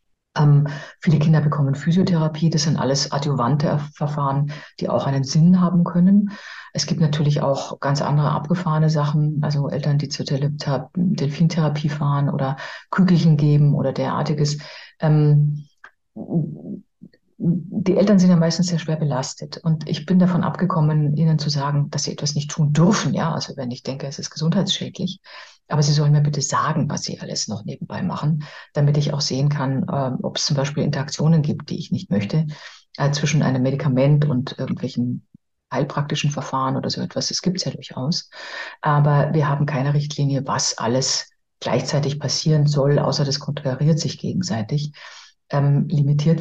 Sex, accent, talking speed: female, German, 160 wpm